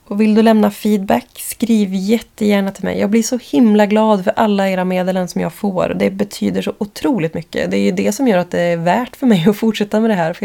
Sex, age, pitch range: female, 20-39, 170-220 Hz